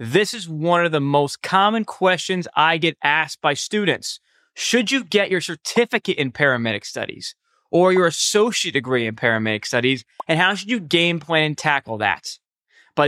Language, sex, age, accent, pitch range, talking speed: English, male, 20-39, American, 145-195 Hz, 175 wpm